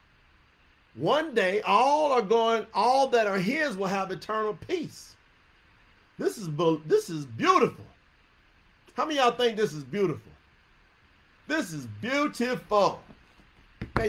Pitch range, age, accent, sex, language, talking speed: 150-220 Hz, 40-59, American, male, English, 130 wpm